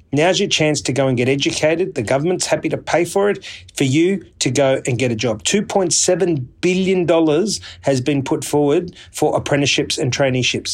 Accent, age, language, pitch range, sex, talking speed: Australian, 30-49, English, 115-150 Hz, male, 185 wpm